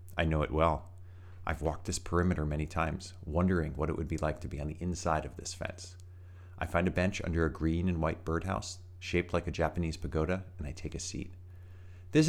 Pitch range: 85-100 Hz